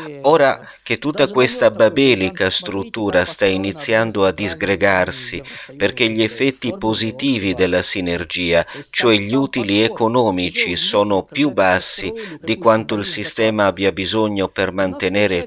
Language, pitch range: Italian, 100-130 Hz